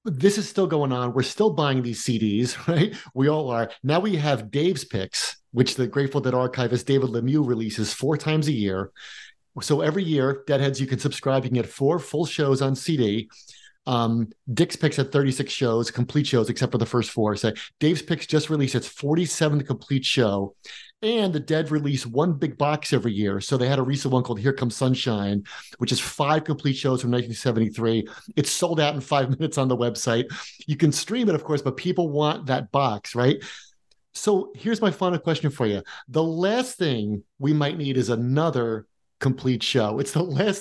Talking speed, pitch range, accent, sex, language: 200 wpm, 125-165 Hz, American, male, English